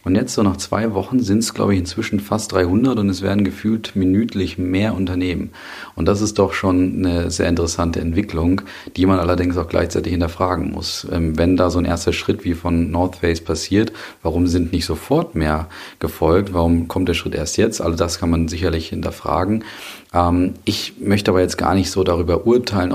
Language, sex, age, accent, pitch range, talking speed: German, male, 40-59, German, 85-95 Hz, 195 wpm